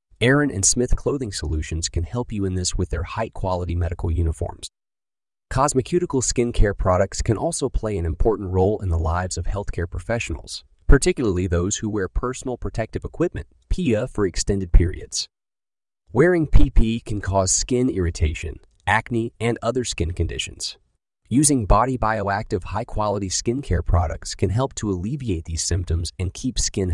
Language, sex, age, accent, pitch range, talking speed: English, male, 30-49, American, 85-115 Hz, 150 wpm